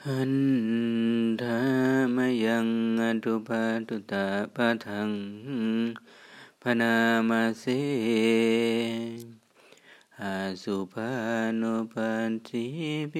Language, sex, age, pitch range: Thai, male, 30-49, 100-115 Hz